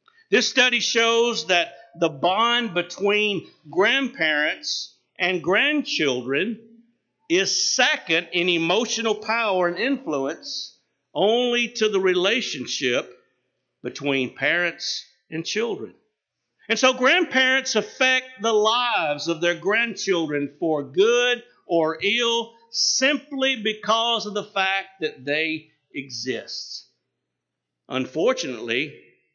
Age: 50-69